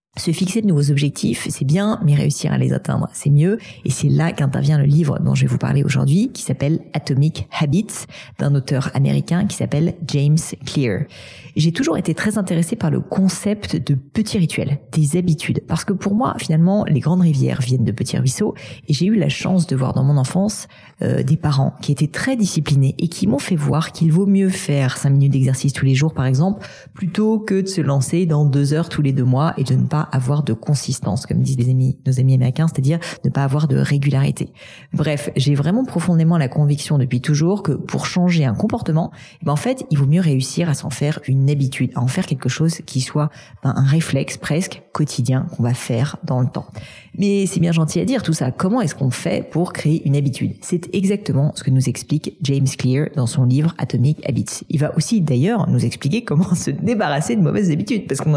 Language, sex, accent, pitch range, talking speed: French, female, French, 135-170 Hz, 220 wpm